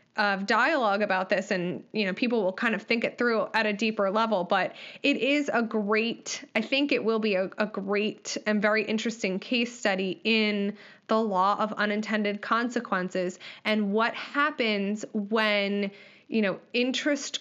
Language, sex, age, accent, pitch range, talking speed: English, female, 20-39, American, 215-270 Hz, 170 wpm